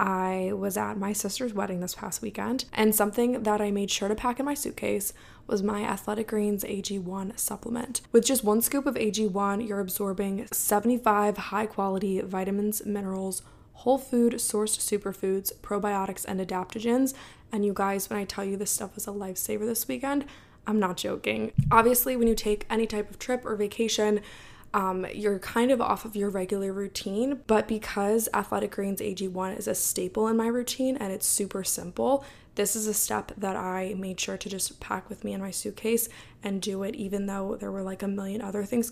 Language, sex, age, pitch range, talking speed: English, female, 10-29, 200-225 Hz, 195 wpm